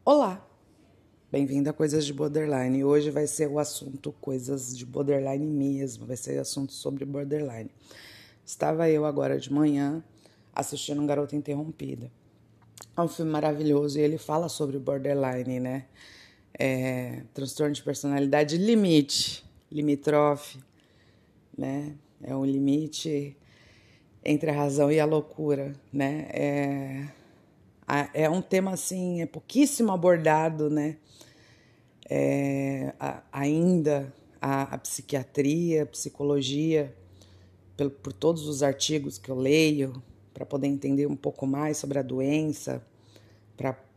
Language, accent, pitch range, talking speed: Portuguese, Brazilian, 130-155 Hz, 125 wpm